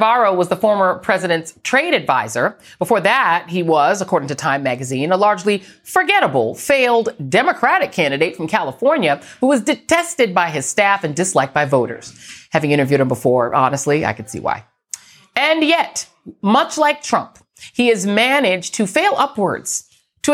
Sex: female